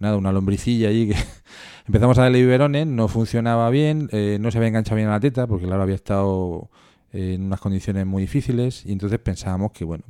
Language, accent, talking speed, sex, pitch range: Spanish, Spanish, 220 wpm, male, 95-110 Hz